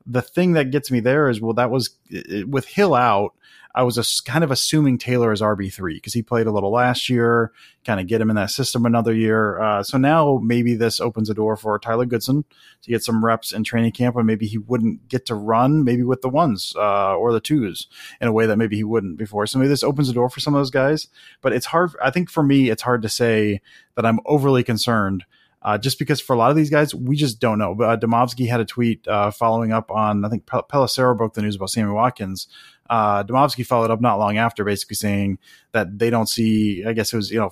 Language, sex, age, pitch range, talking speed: English, male, 30-49, 110-125 Hz, 255 wpm